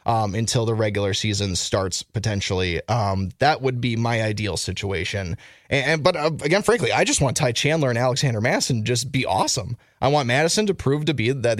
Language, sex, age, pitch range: English, male, 20-39, 105-145 Hz